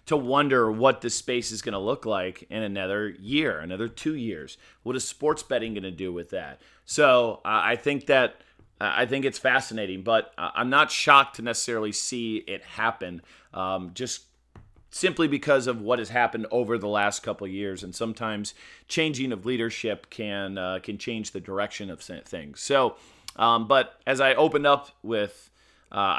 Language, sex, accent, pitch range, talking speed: English, male, American, 105-125 Hz, 185 wpm